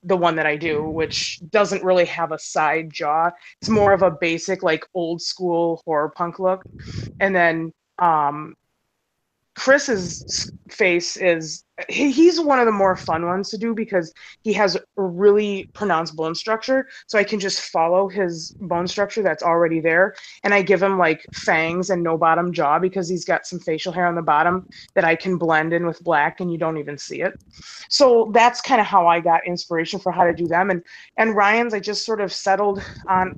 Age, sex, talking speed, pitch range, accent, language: 20-39, female, 200 wpm, 165-195 Hz, American, English